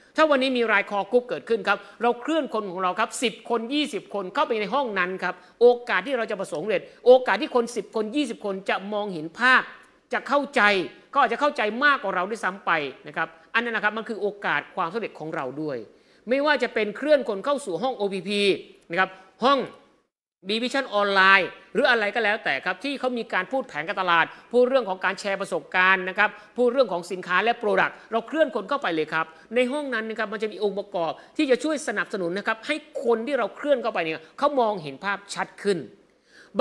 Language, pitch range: Thai, 185-250 Hz